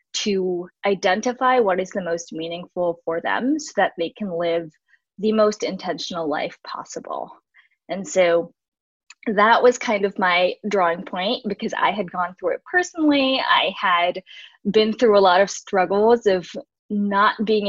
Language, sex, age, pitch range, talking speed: English, female, 10-29, 180-215 Hz, 155 wpm